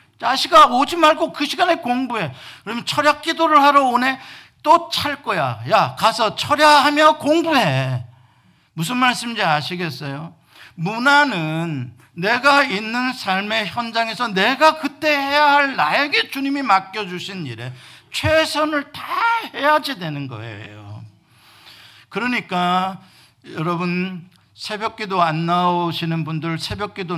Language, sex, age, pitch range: Korean, male, 50-69, 140-220 Hz